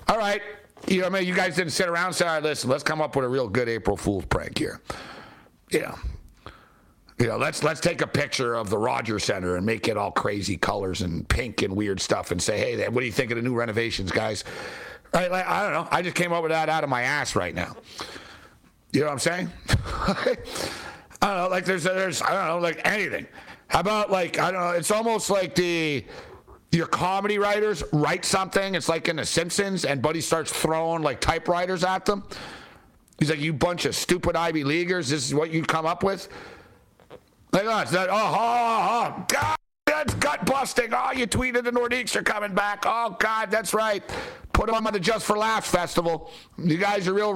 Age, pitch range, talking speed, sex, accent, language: 60-79, 150-200 Hz, 215 wpm, male, American, English